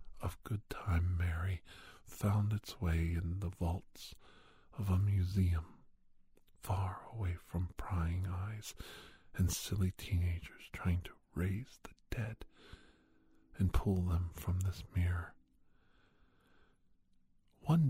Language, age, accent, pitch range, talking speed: English, 50-69, American, 90-110 Hz, 105 wpm